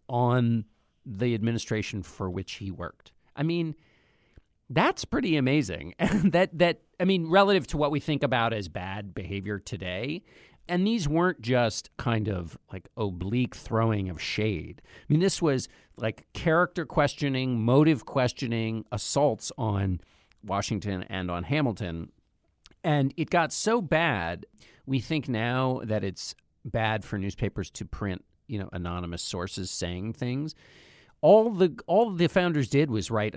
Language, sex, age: English, male, 50-69